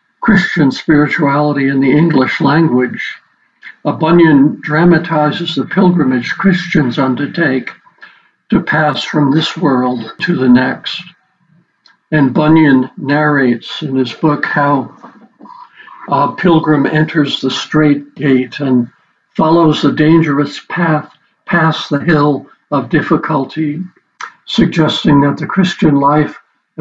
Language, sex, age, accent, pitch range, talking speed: English, male, 60-79, American, 140-165 Hz, 110 wpm